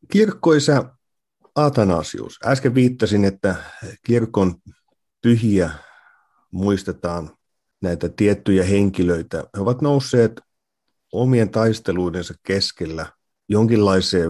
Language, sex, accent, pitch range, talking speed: Finnish, male, native, 90-115 Hz, 75 wpm